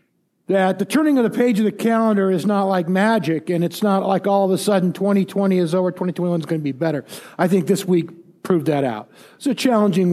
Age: 50-69